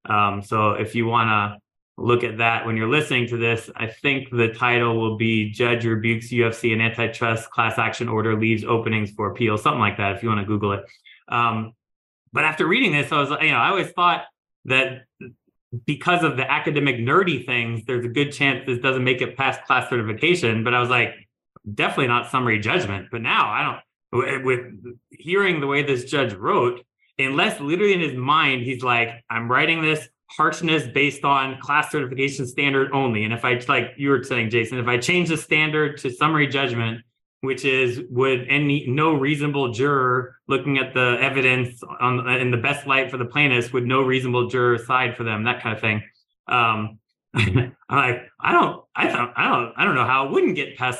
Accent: American